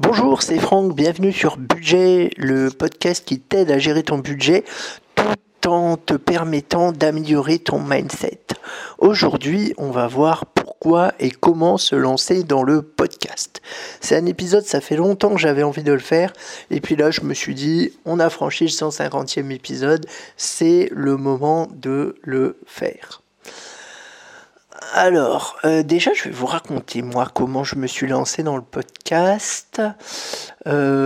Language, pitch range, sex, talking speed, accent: French, 135-175 Hz, male, 155 wpm, French